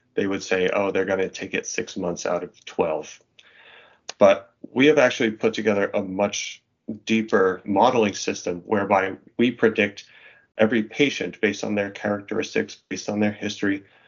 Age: 30-49